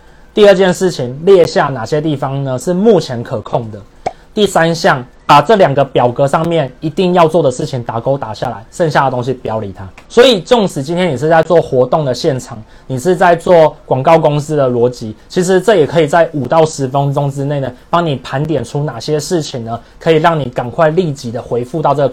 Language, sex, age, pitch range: Chinese, male, 20-39, 130-185 Hz